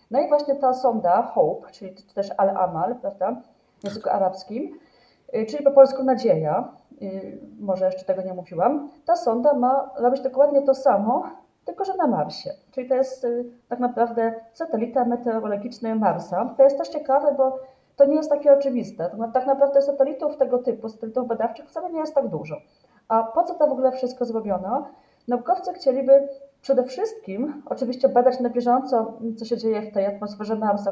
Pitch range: 210-270 Hz